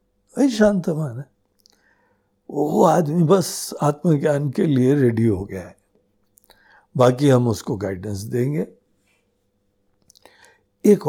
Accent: native